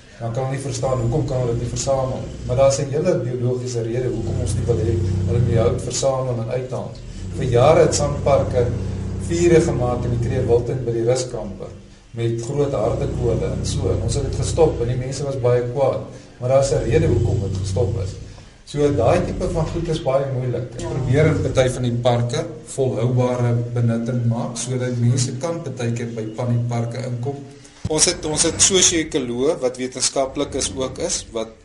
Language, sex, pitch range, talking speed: Dutch, male, 115-135 Hz, 205 wpm